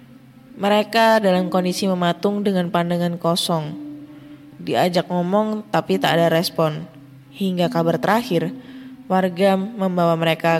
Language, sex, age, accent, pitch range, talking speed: Indonesian, female, 20-39, native, 170-220 Hz, 110 wpm